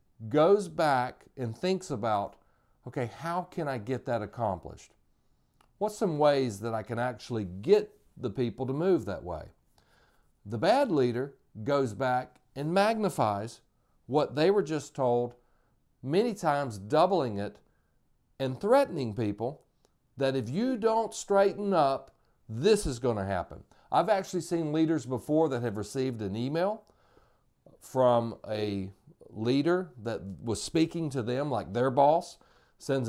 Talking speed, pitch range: 140 wpm, 120-170 Hz